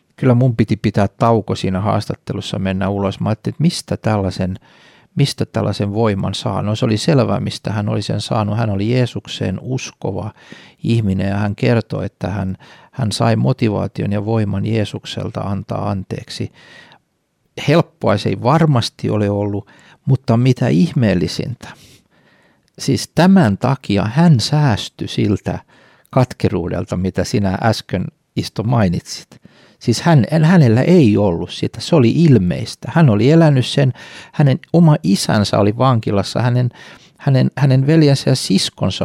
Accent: native